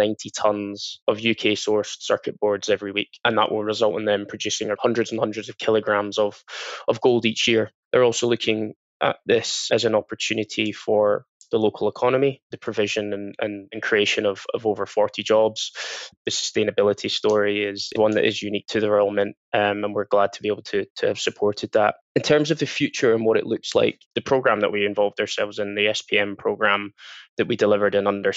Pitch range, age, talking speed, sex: 100-110 Hz, 10-29, 205 wpm, male